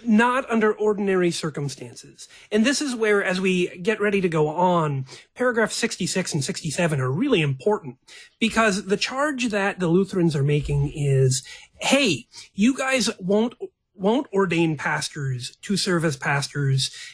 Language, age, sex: English, 30-49, male